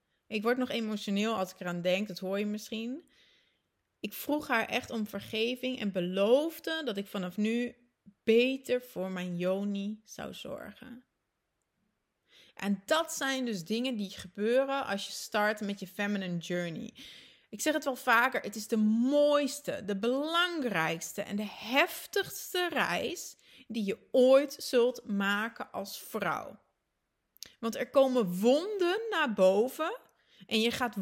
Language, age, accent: Dutch, 30-49, Dutch